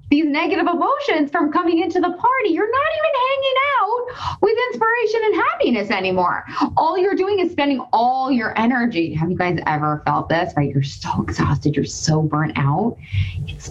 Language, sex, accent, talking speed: English, female, American, 180 wpm